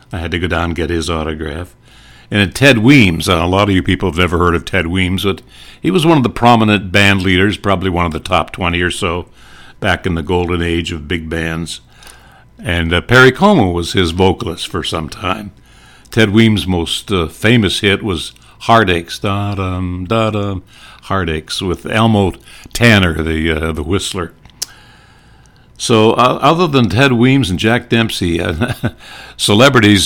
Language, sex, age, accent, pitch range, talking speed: English, male, 60-79, American, 90-110 Hz, 180 wpm